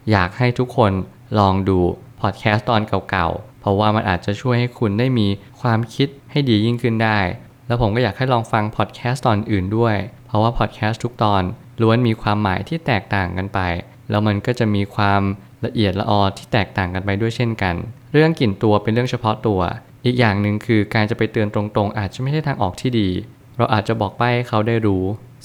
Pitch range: 100-125 Hz